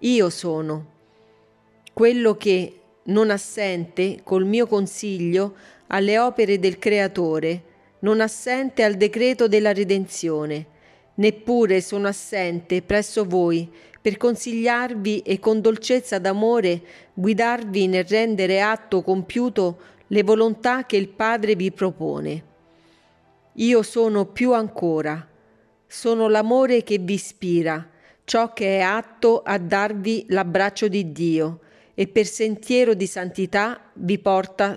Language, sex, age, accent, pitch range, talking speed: Italian, female, 40-59, native, 170-215 Hz, 115 wpm